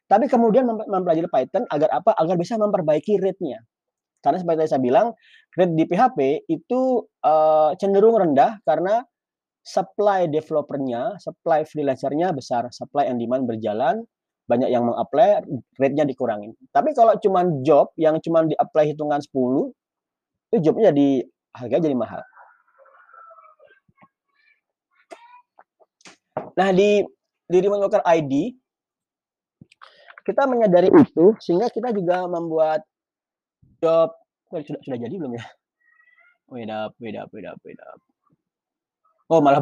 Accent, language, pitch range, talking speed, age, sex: native, Indonesian, 150-230 Hz, 115 wpm, 30-49, male